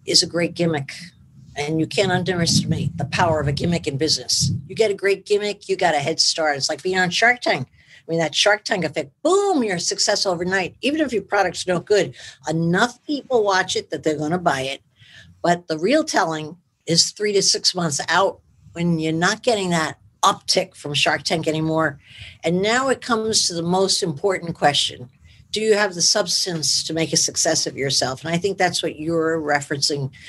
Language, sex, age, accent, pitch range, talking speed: English, female, 50-69, American, 160-210 Hz, 205 wpm